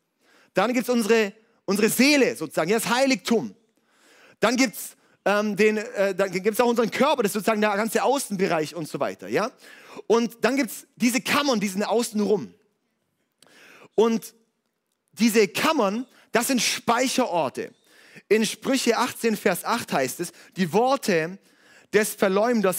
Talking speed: 145 wpm